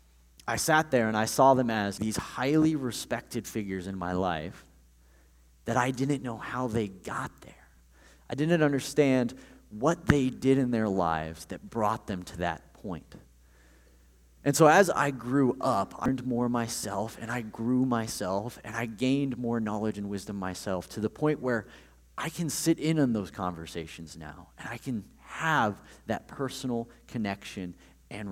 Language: English